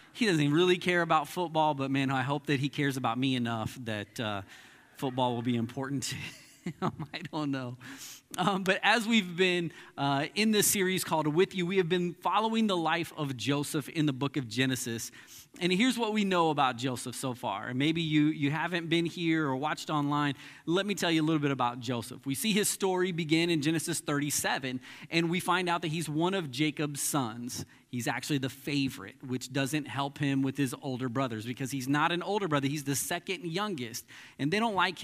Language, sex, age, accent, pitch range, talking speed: English, male, 30-49, American, 135-175 Hz, 210 wpm